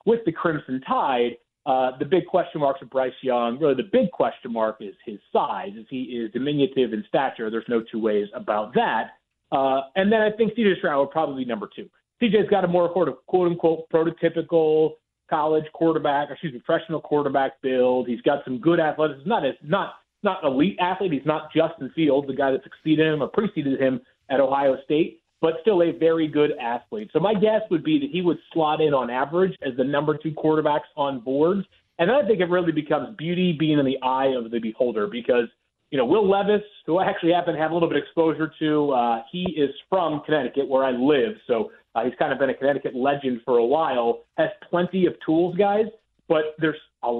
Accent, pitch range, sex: American, 135-170 Hz, male